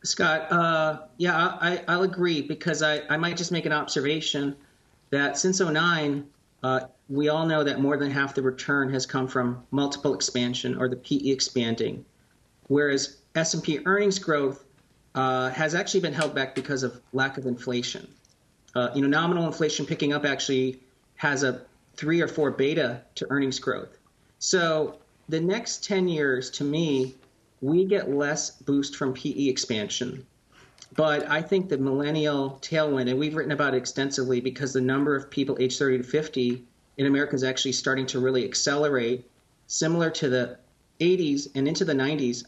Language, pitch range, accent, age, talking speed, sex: English, 130-155 Hz, American, 40-59, 170 wpm, male